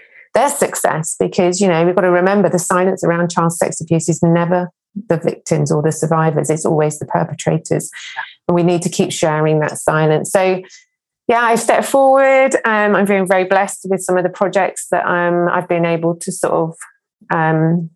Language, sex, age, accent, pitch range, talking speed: English, female, 30-49, British, 165-185 Hz, 200 wpm